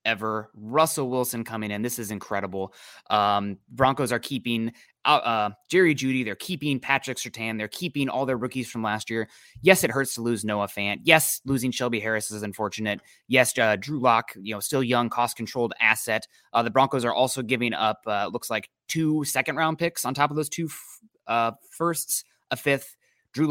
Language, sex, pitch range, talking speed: English, male, 115-155 Hz, 195 wpm